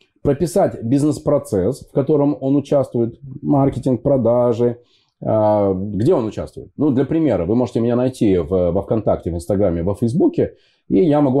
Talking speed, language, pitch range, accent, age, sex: 145 wpm, Russian, 100-140 Hz, native, 20-39, male